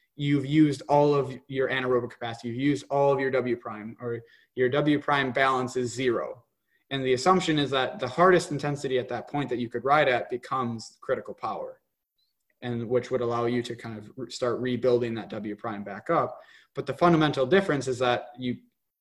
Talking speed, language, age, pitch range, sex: 195 wpm, English, 20-39, 125-155 Hz, male